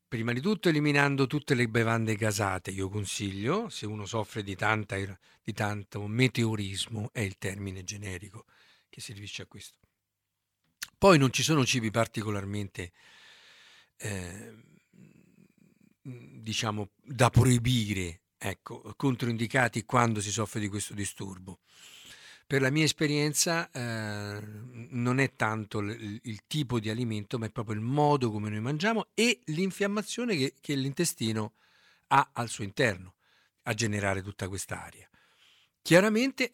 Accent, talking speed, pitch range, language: native, 130 wpm, 105-140 Hz, Italian